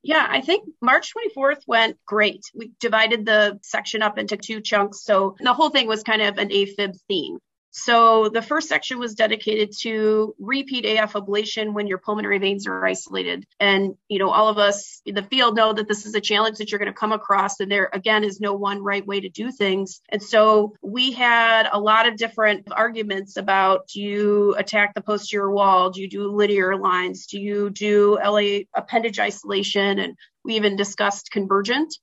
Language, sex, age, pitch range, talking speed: English, female, 30-49, 200-230 Hz, 195 wpm